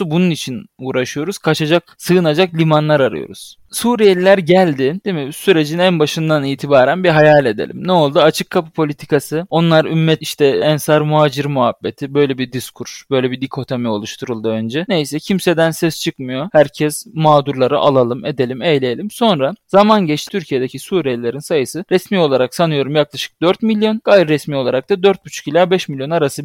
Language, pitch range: Turkish, 145-190 Hz